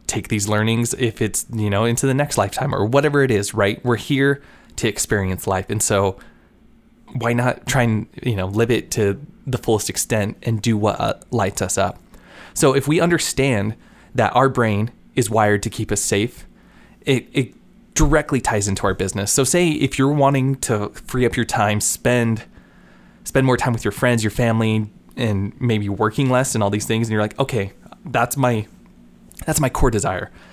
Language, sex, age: English, male, 20-39